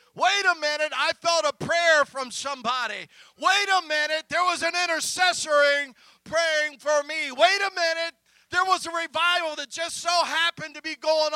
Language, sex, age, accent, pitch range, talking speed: English, male, 40-59, American, 260-350 Hz, 175 wpm